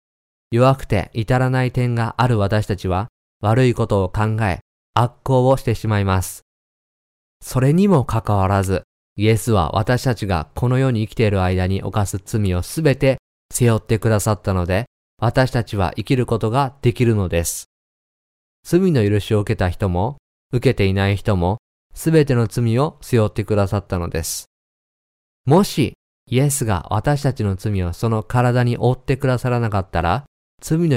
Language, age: Japanese, 20-39